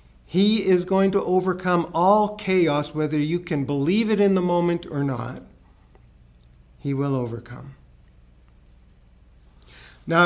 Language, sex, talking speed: English, male, 125 wpm